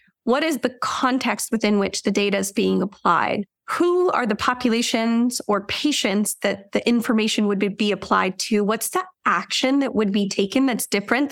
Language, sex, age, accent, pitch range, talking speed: English, female, 20-39, American, 205-245 Hz, 175 wpm